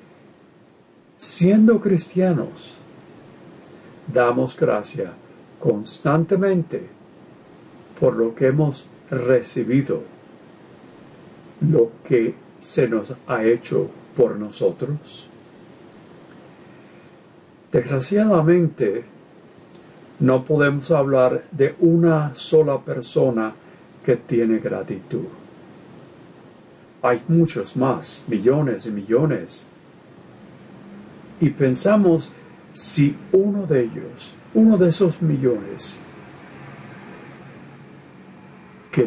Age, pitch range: 50-69, 125-175 Hz